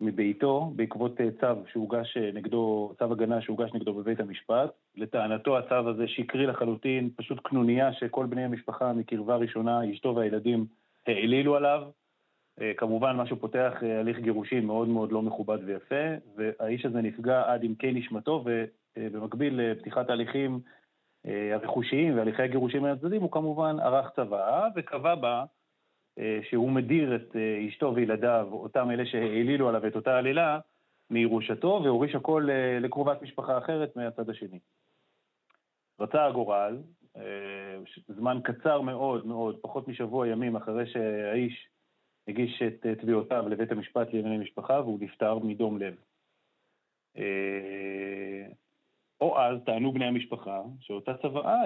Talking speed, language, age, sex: 125 wpm, Hebrew, 30-49, male